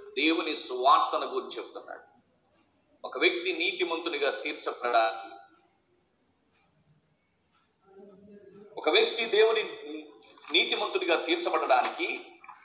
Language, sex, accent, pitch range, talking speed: Telugu, male, native, 340-390 Hz, 60 wpm